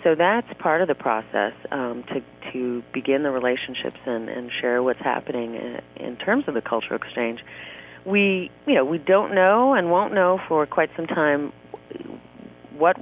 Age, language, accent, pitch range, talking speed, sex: 40-59, English, American, 125-150 Hz, 175 wpm, female